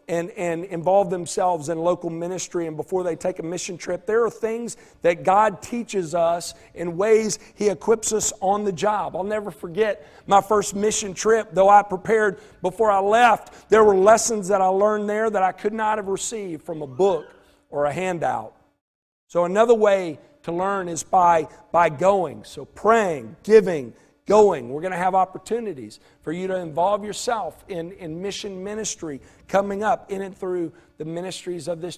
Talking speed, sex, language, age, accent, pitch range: 185 wpm, male, English, 50-69, American, 165-205 Hz